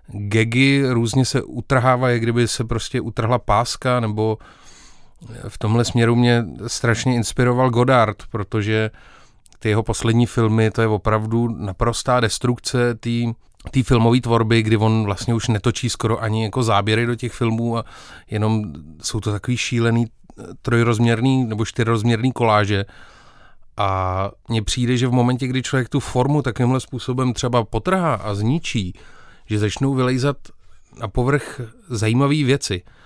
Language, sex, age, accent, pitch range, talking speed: Czech, male, 30-49, native, 105-120 Hz, 140 wpm